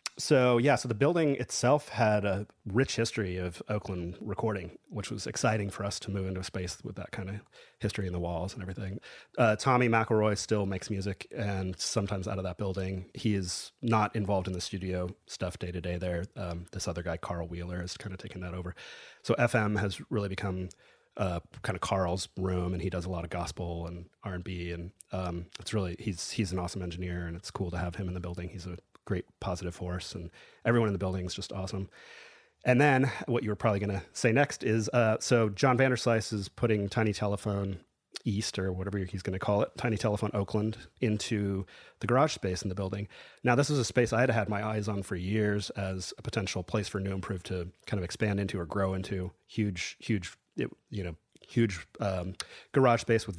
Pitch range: 90-110 Hz